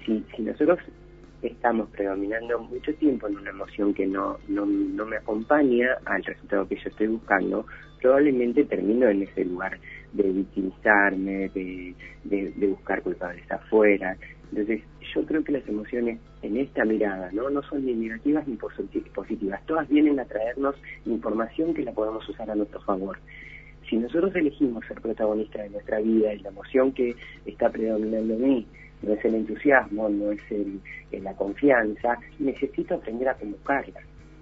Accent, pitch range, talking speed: Argentinian, 105-125 Hz, 165 wpm